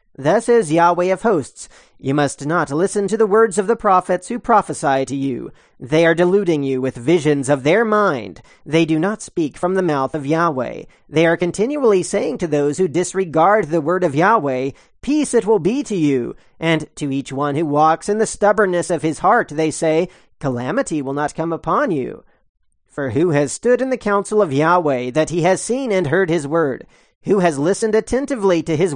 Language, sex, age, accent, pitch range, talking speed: English, male, 40-59, American, 150-200 Hz, 205 wpm